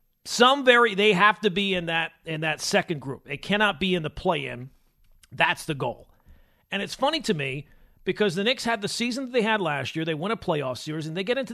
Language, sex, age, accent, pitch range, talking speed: English, male, 40-59, American, 170-240 Hz, 240 wpm